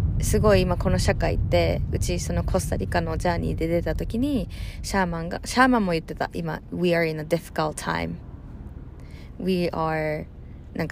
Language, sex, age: Japanese, female, 20-39